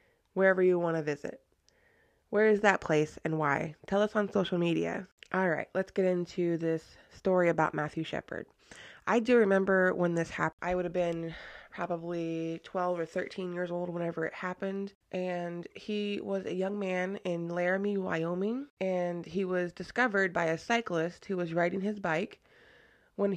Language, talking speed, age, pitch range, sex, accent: English, 170 wpm, 20-39, 170-205 Hz, female, American